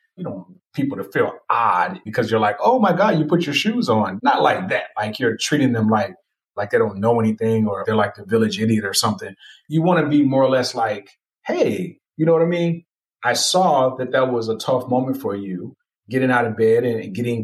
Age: 30-49